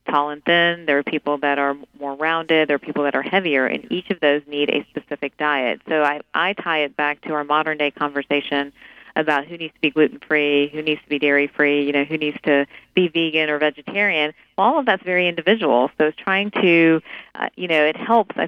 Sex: female